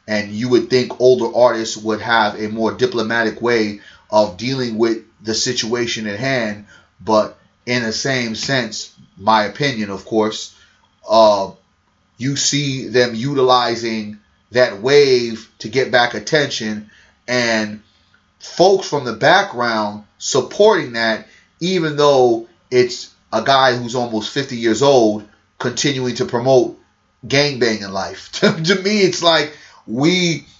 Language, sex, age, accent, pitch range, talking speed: English, male, 30-49, American, 110-150 Hz, 130 wpm